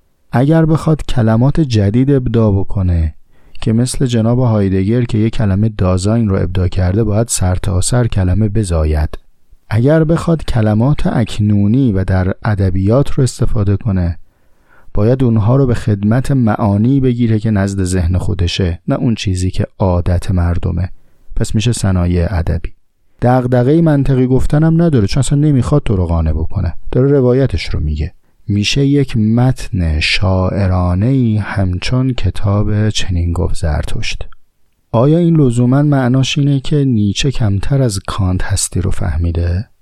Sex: male